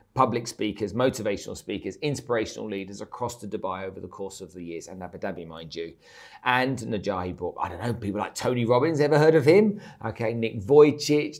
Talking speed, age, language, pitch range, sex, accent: 195 wpm, 40-59, English, 100-125 Hz, male, British